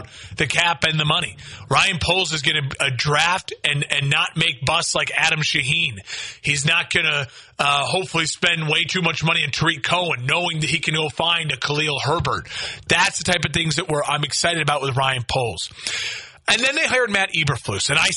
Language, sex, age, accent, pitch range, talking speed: English, male, 30-49, American, 145-185 Hz, 200 wpm